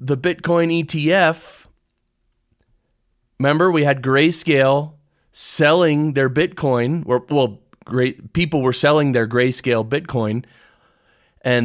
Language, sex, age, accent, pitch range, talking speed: English, male, 30-49, American, 110-140 Hz, 105 wpm